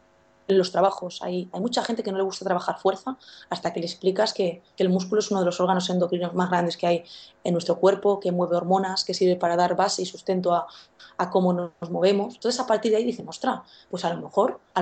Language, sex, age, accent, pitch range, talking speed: Spanish, female, 20-39, Spanish, 180-220 Hz, 245 wpm